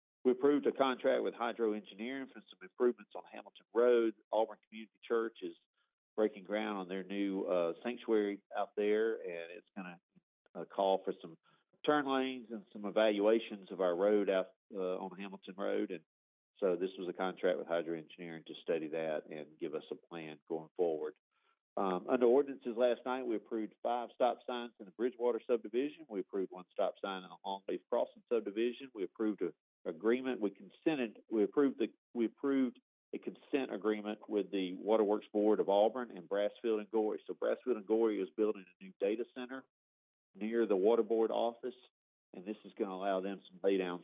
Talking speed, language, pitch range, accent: 190 wpm, English, 95-120 Hz, American